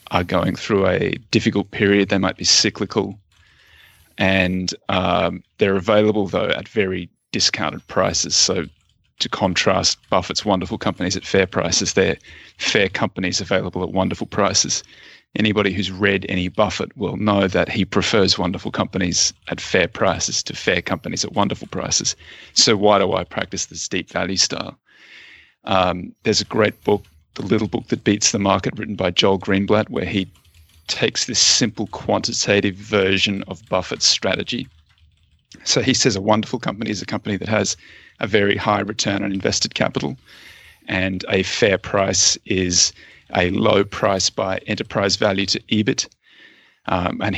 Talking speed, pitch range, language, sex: 155 wpm, 90-105 Hz, English, male